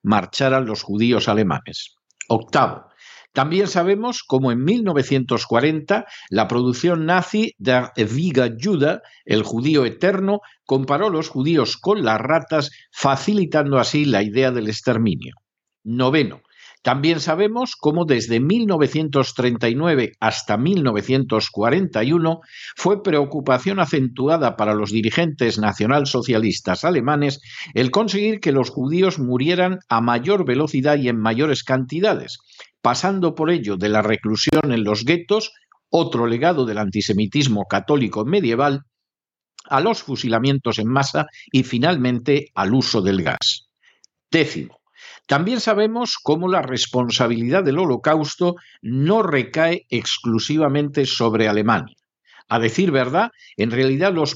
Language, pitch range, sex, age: Spanish, 115-170 Hz, male, 60-79